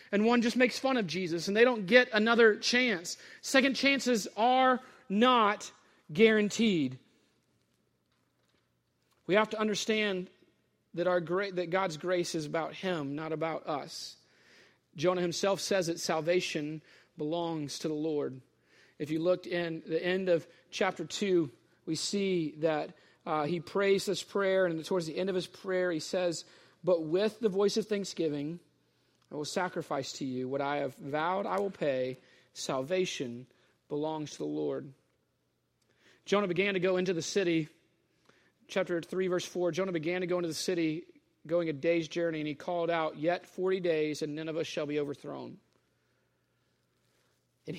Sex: male